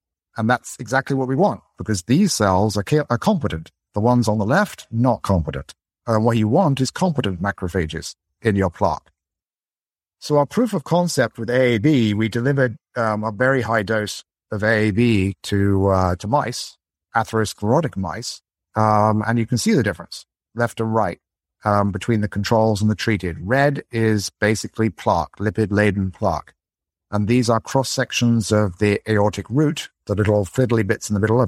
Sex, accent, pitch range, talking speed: male, British, 100-125 Hz, 175 wpm